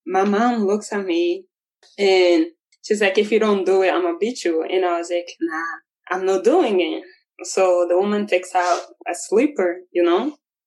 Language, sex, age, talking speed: English, female, 20-39, 200 wpm